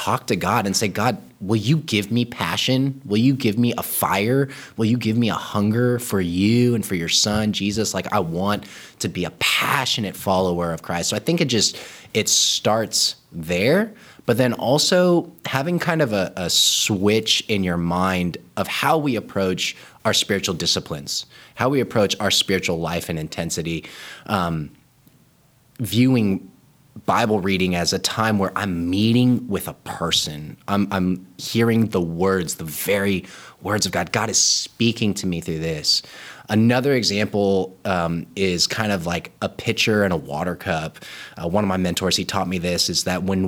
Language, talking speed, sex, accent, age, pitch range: English, 180 wpm, male, American, 20-39, 90-120 Hz